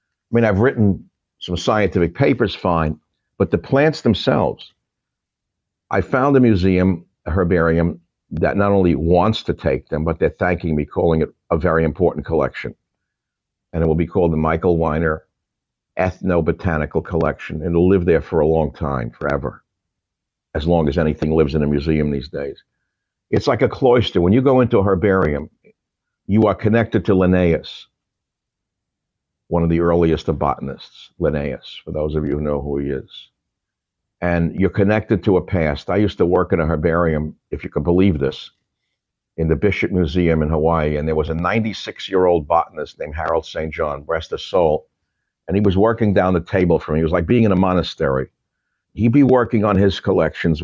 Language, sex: English, male